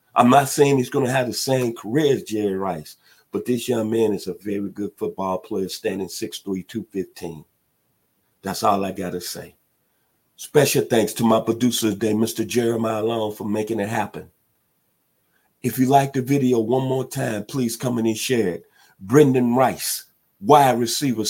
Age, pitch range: 50-69, 105-130 Hz